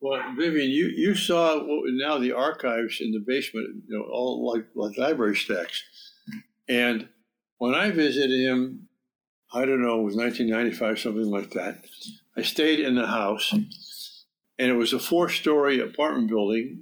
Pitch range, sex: 120-170 Hz, male